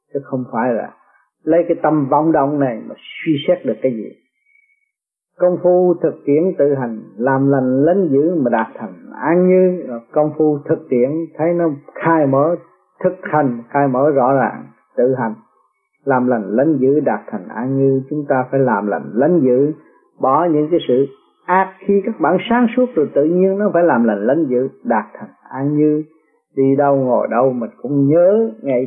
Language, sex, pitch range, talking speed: Vietnamese, male, 125-175 Hz, 195 wpm